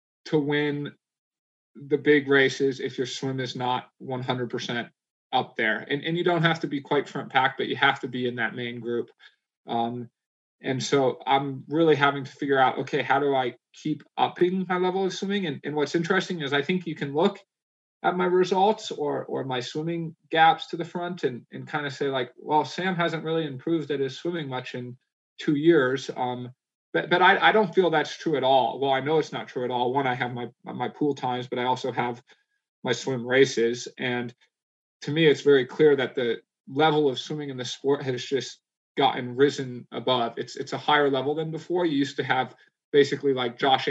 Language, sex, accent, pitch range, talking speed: English, male, American, 125-155 Hz, 215 wpm